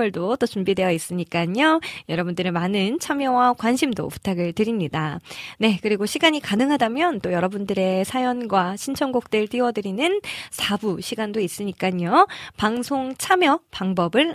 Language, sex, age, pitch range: Korean, female, 20-39, 190-275 Hz